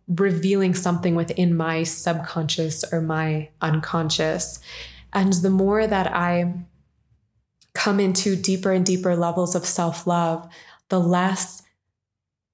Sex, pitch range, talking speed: female, 165-185 Hz, 115 wpm